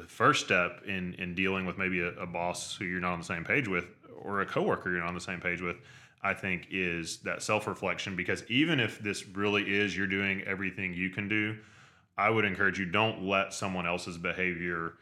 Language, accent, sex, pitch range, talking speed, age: English, American, male, 90-105 Hz, 220 wpm, 20-39